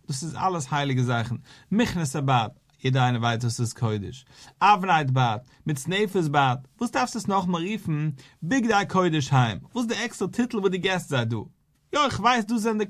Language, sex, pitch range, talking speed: English, male, 135-185 Hz, 195 wpm